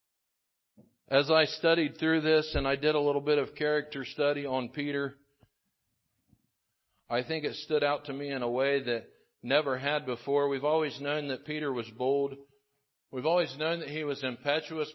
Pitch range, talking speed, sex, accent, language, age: 140-175 Hz, 185 wpm, male, American, English, 50-69